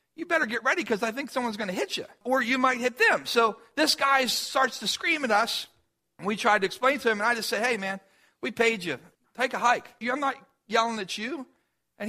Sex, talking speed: male, 250 wpm